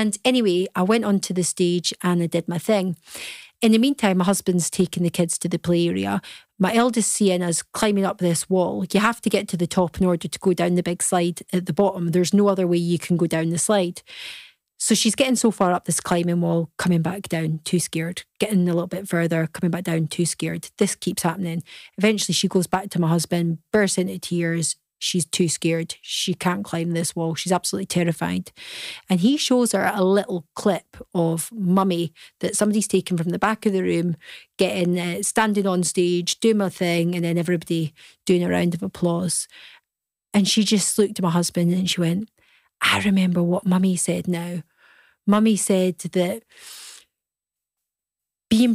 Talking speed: 200 wpm